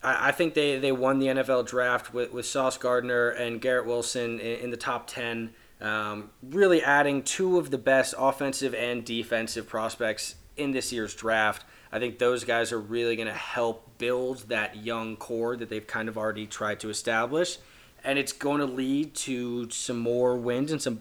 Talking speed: 190 wpm